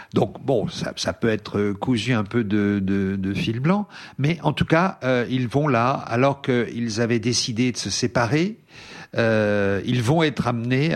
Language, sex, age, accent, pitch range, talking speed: French, male, 50-69, French, 105-140 Hz, 185 wpm